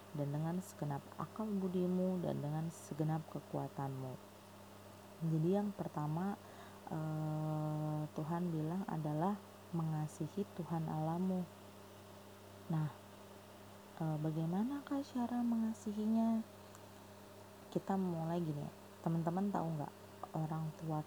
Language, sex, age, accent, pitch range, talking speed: Indonesian, female, 20-39, native, 145-180 Hz, 90 wpm